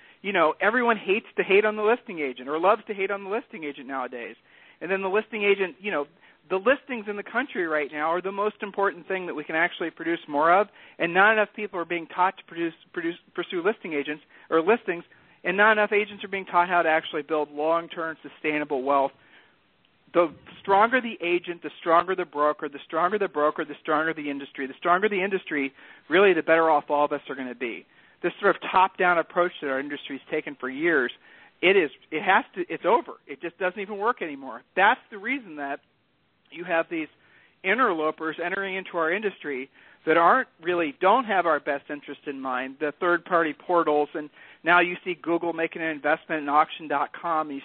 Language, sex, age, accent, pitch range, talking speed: English, male, 50-69, American, 150-200 Hz, 205 wpm